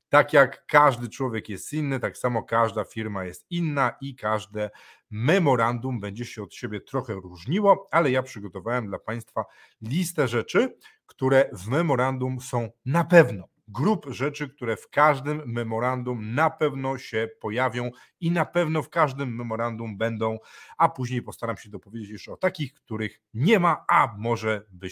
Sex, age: male, 40-59